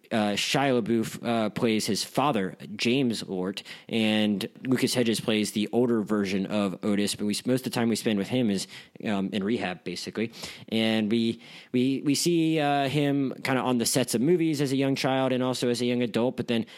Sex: male